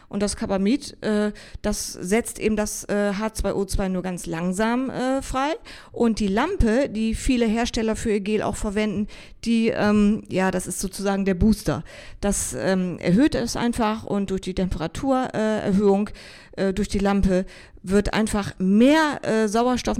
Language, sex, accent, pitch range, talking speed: German, female, German, 185-230 Hz, 155 wpm